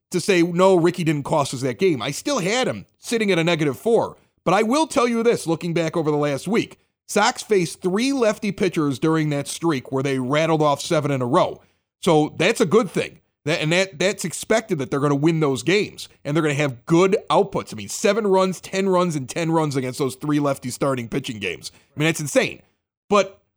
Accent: American